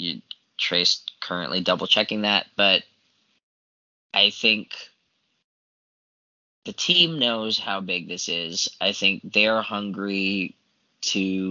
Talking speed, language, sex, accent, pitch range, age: 110 wpm, English, male, American, 90-100 Hz, 20-39